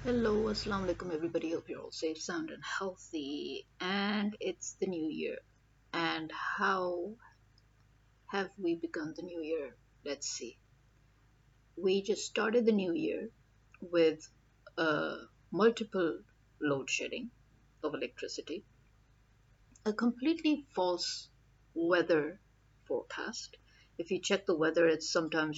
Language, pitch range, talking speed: English, 150-210 Hz, 120 wpm